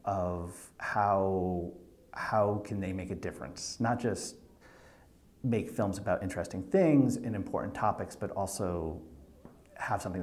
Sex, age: male, 40-59